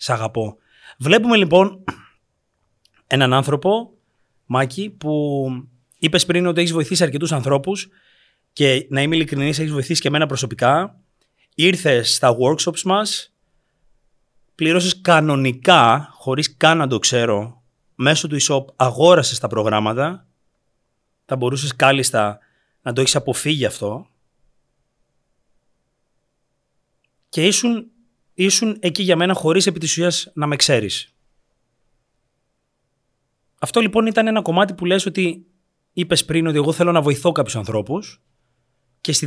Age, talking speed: 30-49, 120 wpm